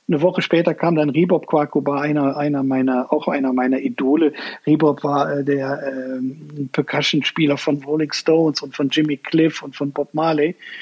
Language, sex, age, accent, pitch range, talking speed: German, male, 50-69, German, 145-180 Hz, 175 wpm